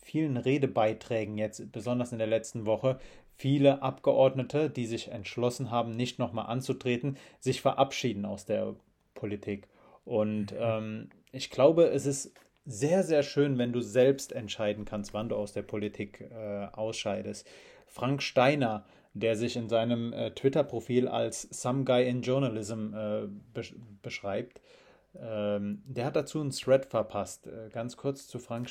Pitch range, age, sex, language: 110-130 Hz, 30-49, male, German